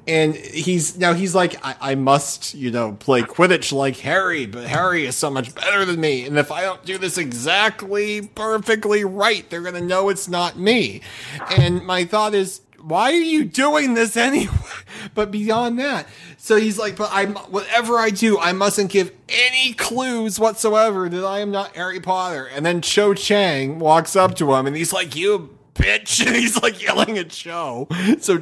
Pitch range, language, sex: 130-190 Hz, English, male